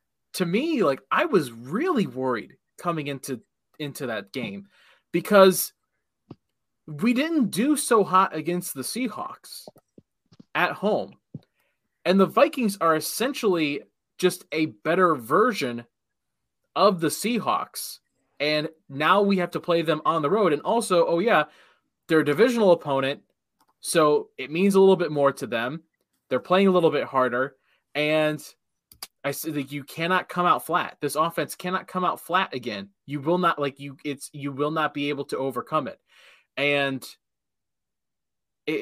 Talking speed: 155 wpm